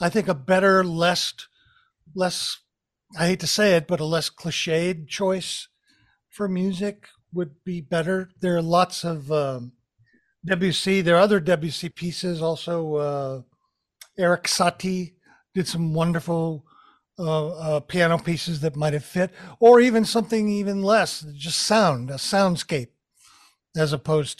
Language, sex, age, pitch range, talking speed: English, male, 50-69, 160-195 Hz, 135 wpm